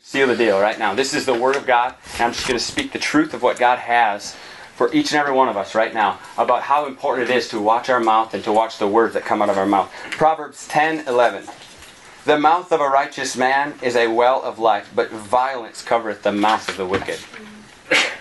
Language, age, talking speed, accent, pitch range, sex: English, 30-49, 245 wpm, American, 115-155 Hz, male